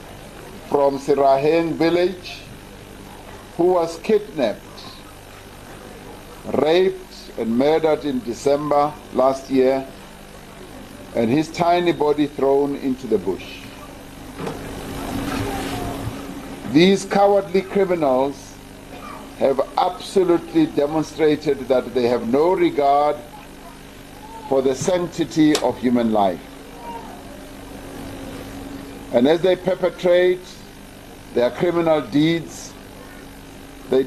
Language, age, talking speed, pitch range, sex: English, 60-79, 80 wpm, 115-175 Hz, male